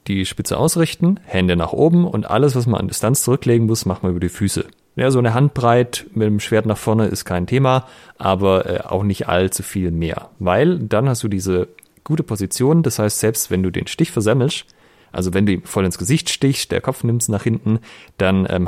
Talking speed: 220 wpm